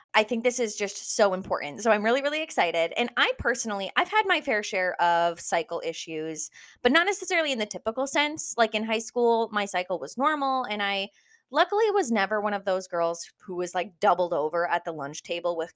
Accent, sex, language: American, female, English